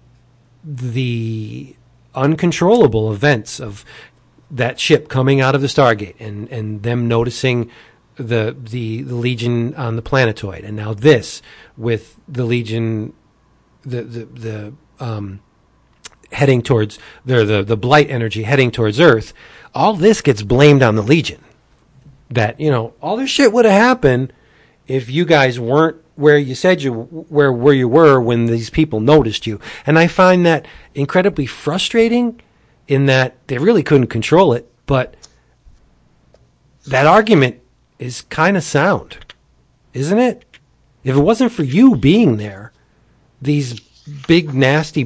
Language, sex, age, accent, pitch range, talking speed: English, male, 40-59, American, 115-150 Hz, 140 wpm